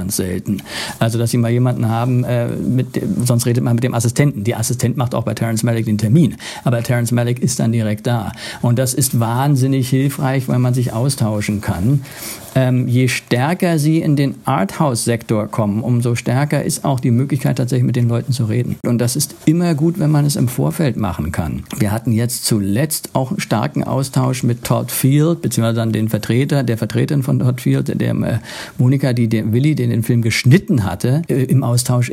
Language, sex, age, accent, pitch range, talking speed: German, male, 50-69, German, 115-135 Hz, 200 wpm